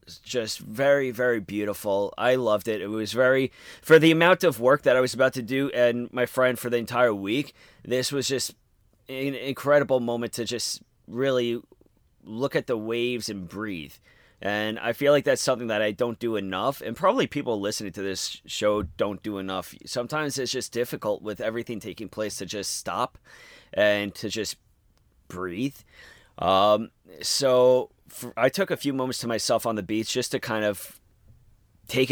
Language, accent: English, American